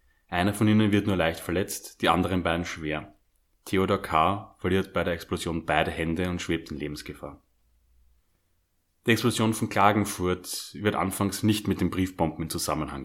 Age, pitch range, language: 30-49, 80-100 Hz, German